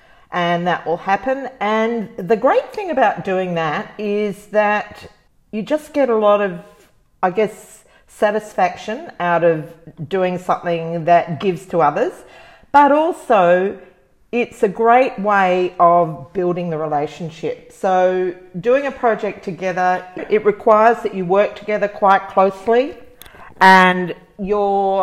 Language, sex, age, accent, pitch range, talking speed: English, female, 40-59, Australian, 175-220 Hz, 130 wpm